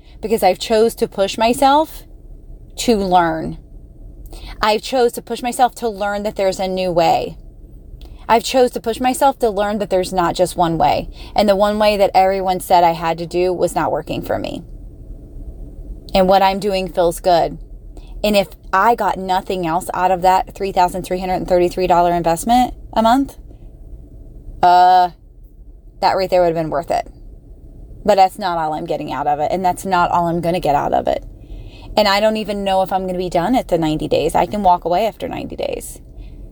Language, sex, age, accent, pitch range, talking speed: English, female, 20-39, American, 175-210 Hz, 195 wpm